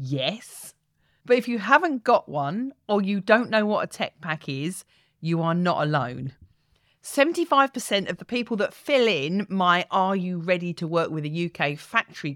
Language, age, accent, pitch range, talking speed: English, 40-59, British, 145-205 Hz, 180 wpm